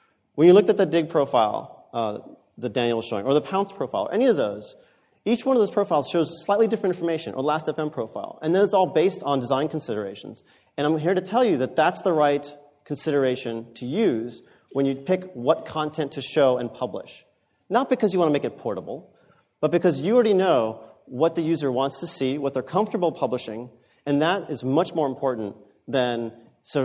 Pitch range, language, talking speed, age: 130-185 Hz, English, 210 wpm, 40-59